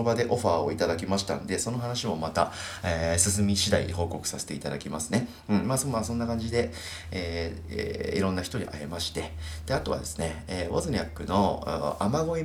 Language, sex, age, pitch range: Japanese, male, 30-49, 80-110 Hz